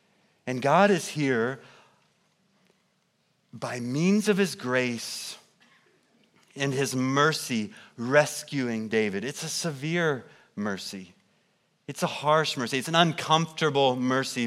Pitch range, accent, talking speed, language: 130-170 Hz, American, 110 wpm, English